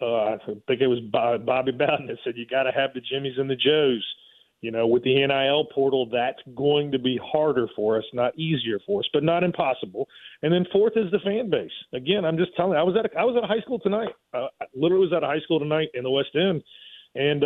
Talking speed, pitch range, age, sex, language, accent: 245 wpm, 140-205 Hz, 40-59, male, English, American